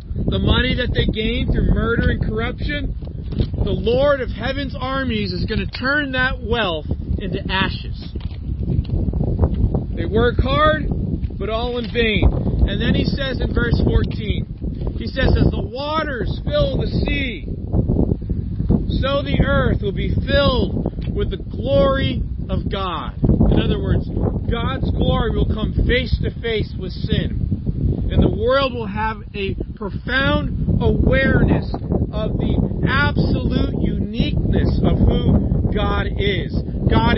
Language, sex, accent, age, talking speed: English, male, American, 40-59, 130 wpm